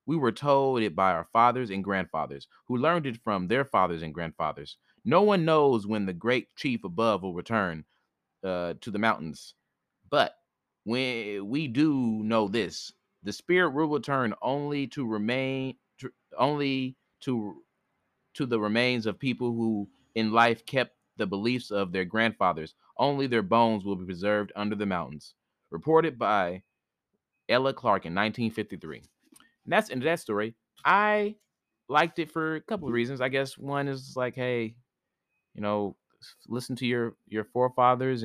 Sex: male